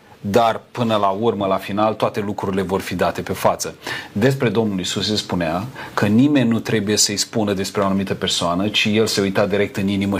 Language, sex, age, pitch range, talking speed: Romanian, male, 40-59, 100-115 Hz, 205 wpm